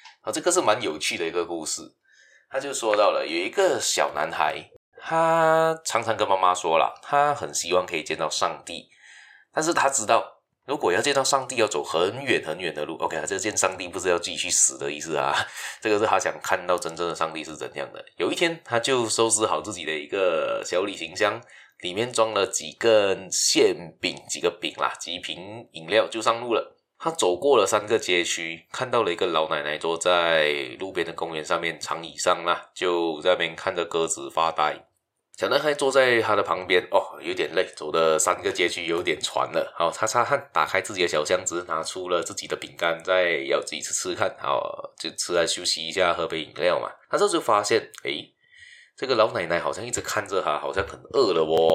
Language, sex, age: Chinese, male, 20-39